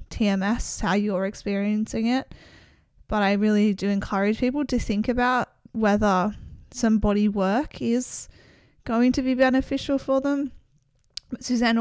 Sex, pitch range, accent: female, 200-235 Hz, Australian